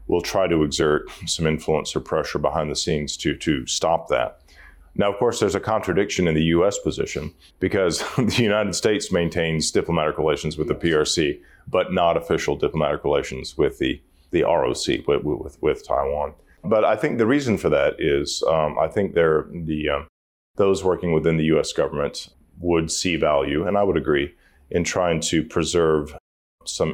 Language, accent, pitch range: Chinese, American, 75-115 Hz